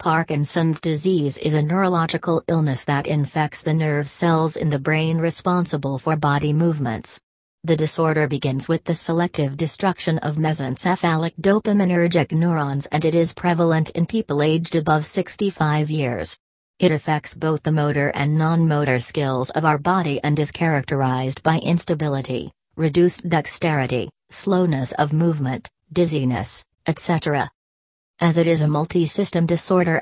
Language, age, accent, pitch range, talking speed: English, 40-59, American, 145-170 Hz, 135 wpm